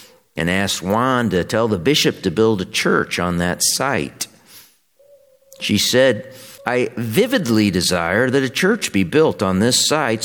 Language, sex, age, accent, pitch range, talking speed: English, male, 50-69, American, 80-120 Hz, 160 wpm